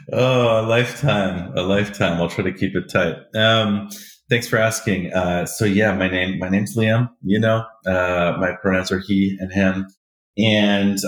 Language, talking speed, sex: English, 170 wpm, male